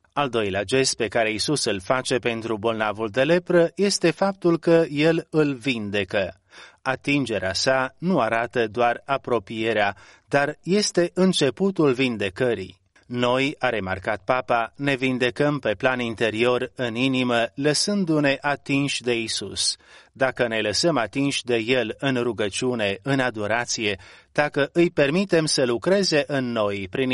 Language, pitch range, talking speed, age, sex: Romanian, 115-150 Hz, 135 wpm, 30-49, male